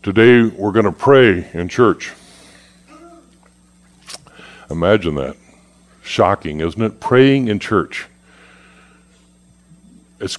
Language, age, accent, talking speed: English, 60-79, American, 90 wpm